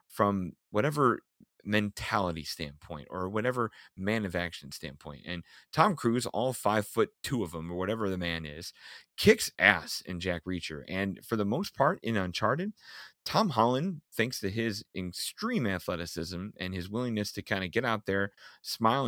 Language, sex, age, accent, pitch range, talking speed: English, male, 30-49, American, 90-120 Hz, 165 wpm